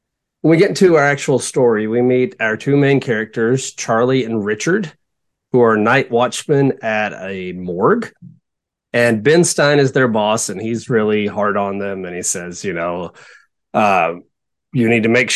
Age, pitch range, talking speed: 30-49, 110-140 Hz, 170 wpm